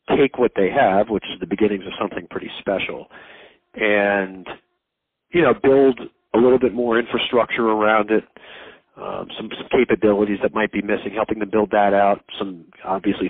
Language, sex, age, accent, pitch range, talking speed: English, male, 40-59, American, 95-110 Hz, 170 wpm